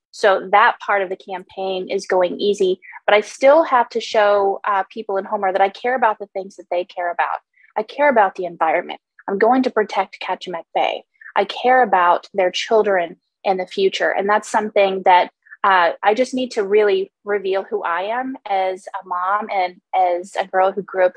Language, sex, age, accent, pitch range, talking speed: English, female, 20-39, American, 185-230 Hz, 205 wpm